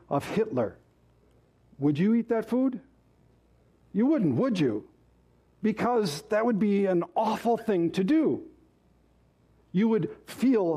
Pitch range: 140-210 Hz